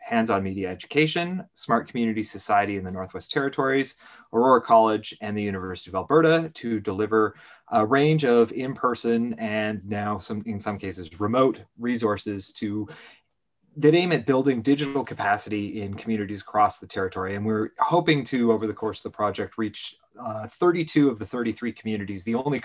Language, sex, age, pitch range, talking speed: English, male, 30-49, 105-135 Hz, 165 wpm